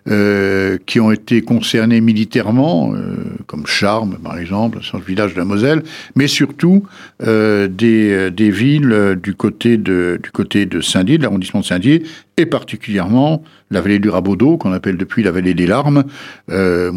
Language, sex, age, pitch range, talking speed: French, male, 60-79, 100-130 Hz, 170 wpm